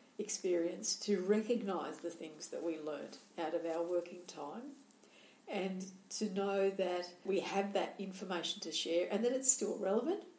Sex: female